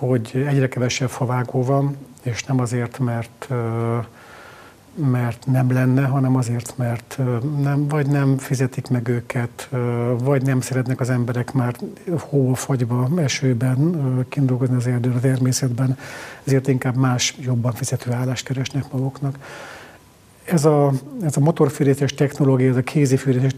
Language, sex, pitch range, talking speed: Hungarian, male, 125-135 Hz, 125 wpm